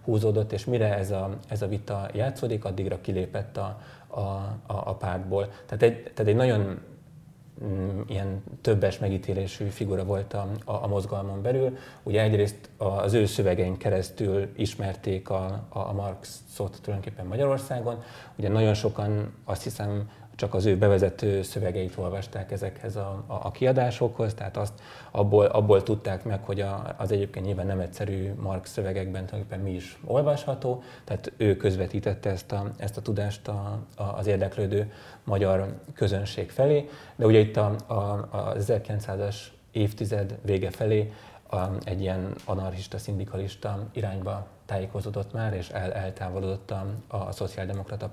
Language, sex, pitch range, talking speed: Hungarian, male, 95-110 Hz, 140 wpm